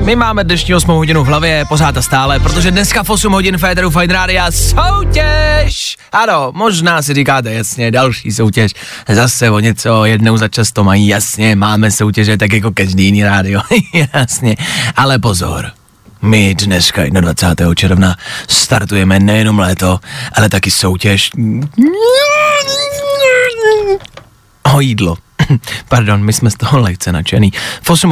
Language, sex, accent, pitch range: Czech, male, native, 105-160 Hz